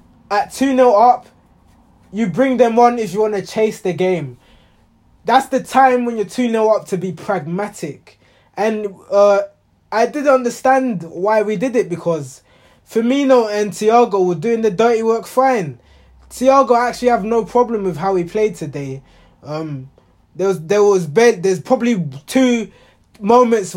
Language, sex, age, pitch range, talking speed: English, male, 20-39, 160-225 Hz, 160 wpm